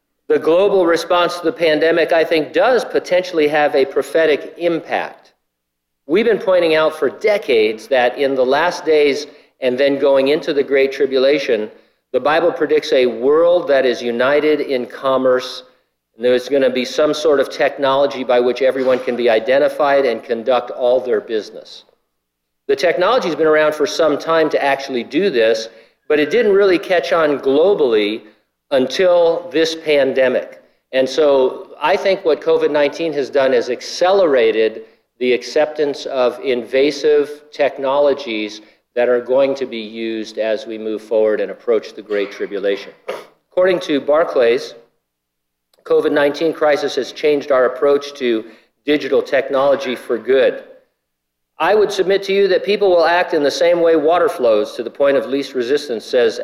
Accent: American